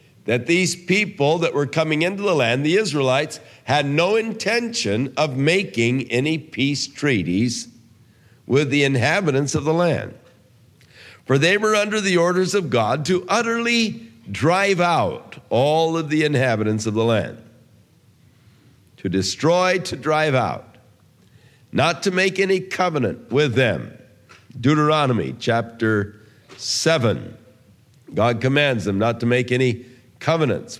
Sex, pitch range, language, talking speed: male, 115-150 Hz, English, 130 wpm